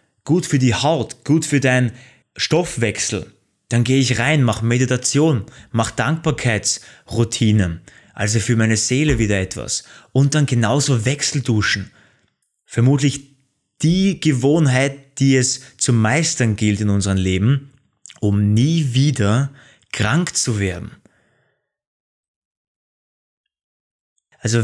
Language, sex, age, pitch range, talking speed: German, male, 20-39, 105-140 Hz, 105 wpm